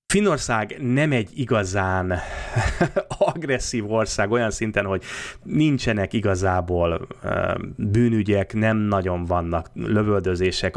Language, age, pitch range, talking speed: Hungarian, 30-49, 90-120 Hz, 90 wpm